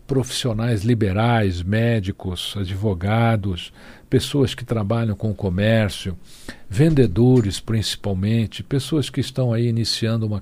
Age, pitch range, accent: 60-79, 105-125 Hz, Brazilian